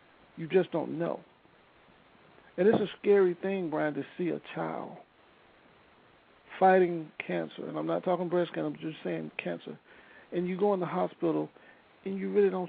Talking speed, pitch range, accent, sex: 170 wpm, 165-195 Hz, American, male